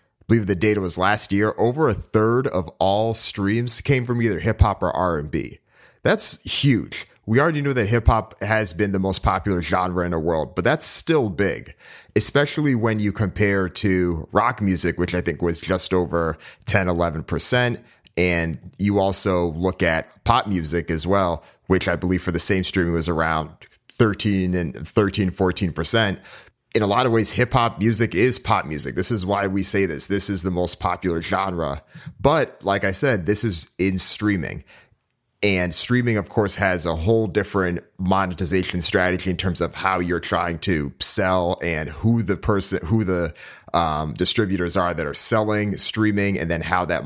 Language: English